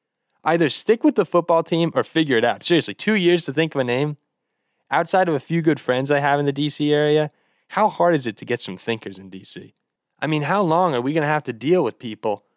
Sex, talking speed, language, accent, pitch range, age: male, 255 wpm, English, American, 125-165 Hz, 20-39